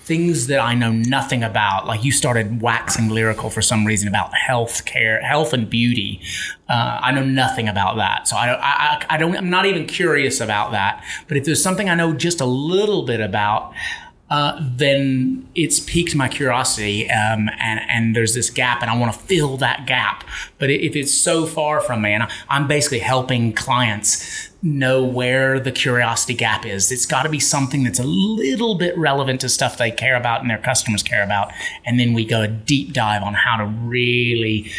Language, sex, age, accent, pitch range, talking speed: English, male, 30-49, American, 110-140 Hz, 200 wpm